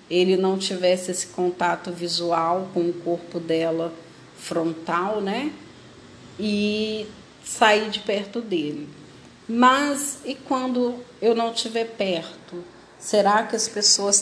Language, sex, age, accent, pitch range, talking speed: Portuguese, female, 40-59, Brazilian, 195-235 Hz, 120 wpm